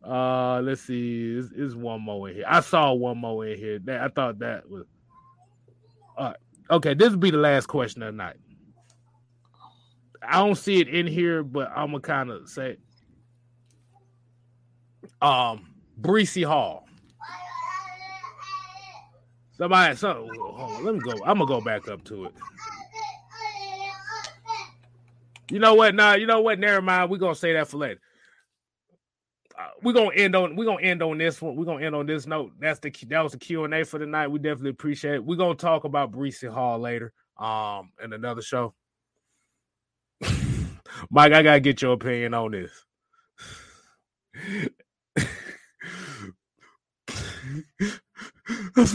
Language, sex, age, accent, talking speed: English, male, 20-39, American, 155 wpm